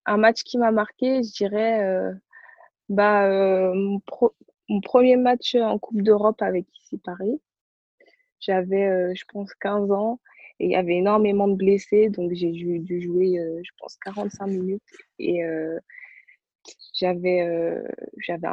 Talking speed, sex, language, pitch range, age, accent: 160 wpm, female, French, 185-210 Hz, 20-39, French